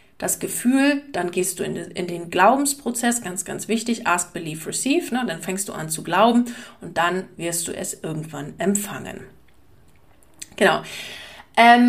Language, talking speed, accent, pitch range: German, 140 wpm, German, 185-230 Hz